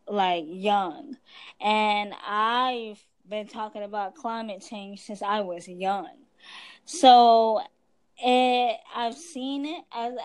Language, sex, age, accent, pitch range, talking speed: English, female, 10-29, American, 205-250 Hz, 105 wpm